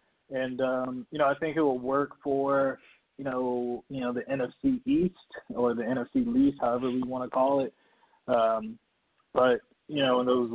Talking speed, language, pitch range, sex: 190 wpm, English, 120-140 Hz, male